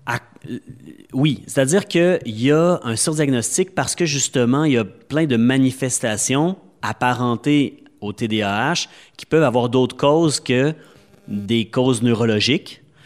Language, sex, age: French, male, 30-49